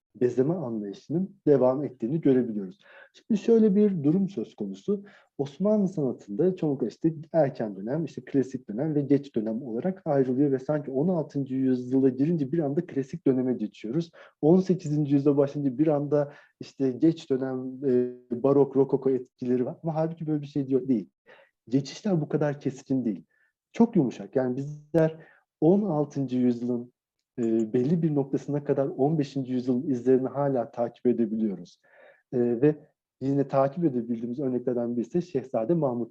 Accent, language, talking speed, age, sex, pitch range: native, Turkish, 140 wpm, 40-59, male, 125-160 Hz